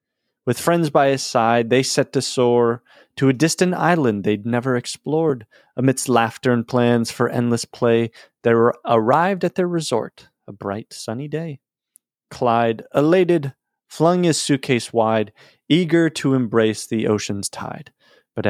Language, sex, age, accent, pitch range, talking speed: English, male, 30-49, American, 115-145 Hz, 145 wpm